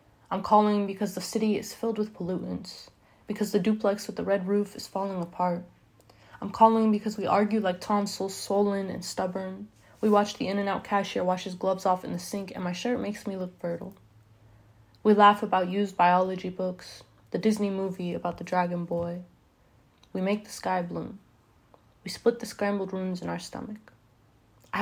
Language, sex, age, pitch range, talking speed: English, female, 20-39, 180-205 Hz, 180 wpm